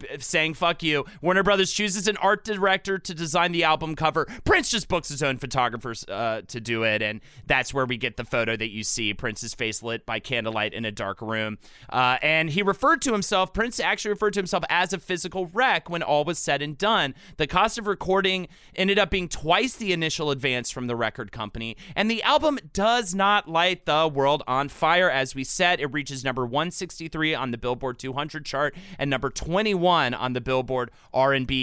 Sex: male